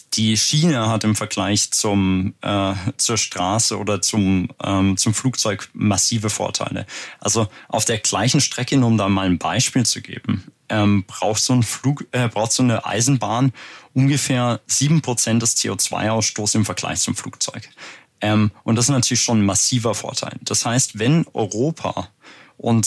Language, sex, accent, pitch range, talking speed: German, male, German, 105-125 Hz, 155 wpm